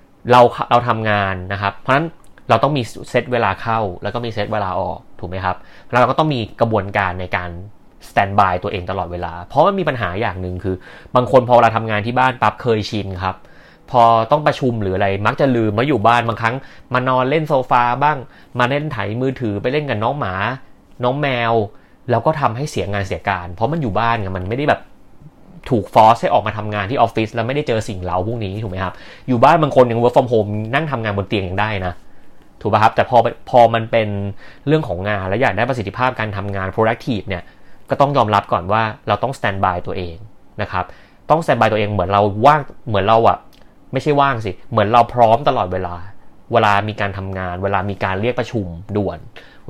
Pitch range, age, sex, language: 100-125 Hz, 30-49, male, Thai